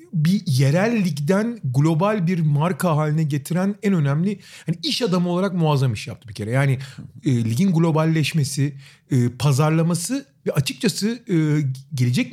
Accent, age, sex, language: native, 40-59, male, Turkish